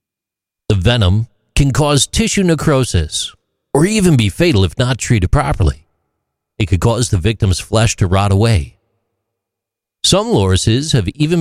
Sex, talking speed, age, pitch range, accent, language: male, 140 wpm, 50-69, 85-140 Hz, American, English